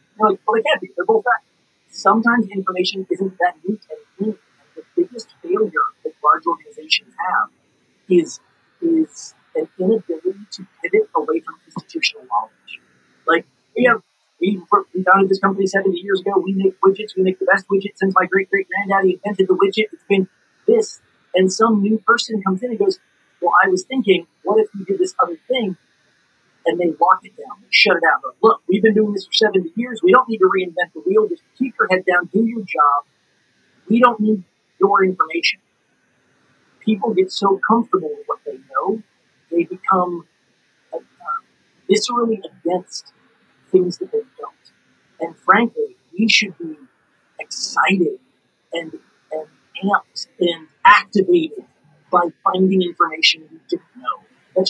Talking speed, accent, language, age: 165 wpm, American, English, 30-49